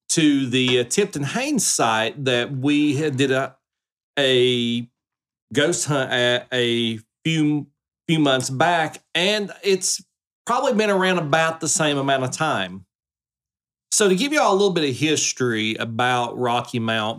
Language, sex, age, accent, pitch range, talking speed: English, male, 40-59, American, 130-175 Hz, 145 wpm